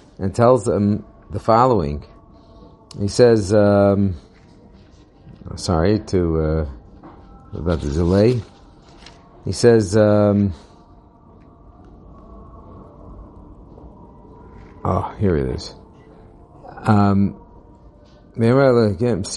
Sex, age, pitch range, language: male, 50-69, 95-120 Hz, English